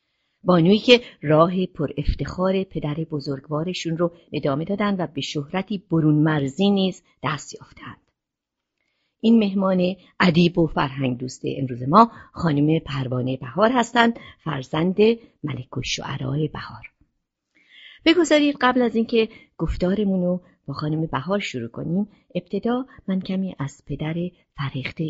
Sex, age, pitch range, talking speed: female, 50-69, 140-185 Hz, 115 wpm